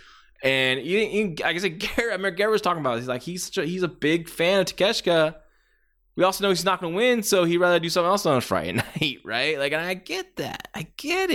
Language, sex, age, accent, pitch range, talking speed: English, male, 20-39, American, 120-185 Hz, 270 wpm